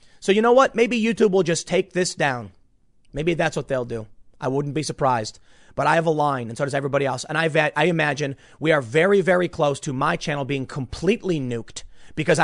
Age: 30-49